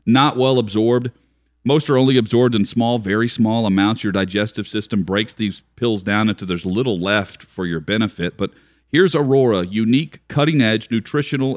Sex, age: male, 40-59